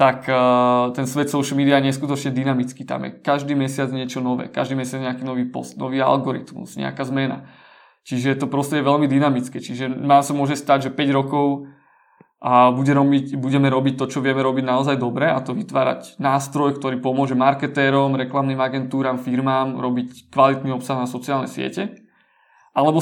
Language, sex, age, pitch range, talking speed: Czech, male, 20-39, 130-145 Hz, 160 wpm